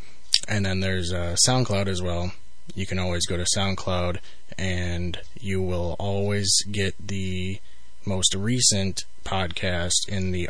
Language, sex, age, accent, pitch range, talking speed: English, male, 20-39, American, 90-100 Hz, 135 wpm